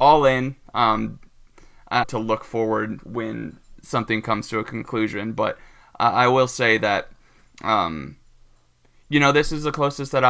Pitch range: 110-125 Hz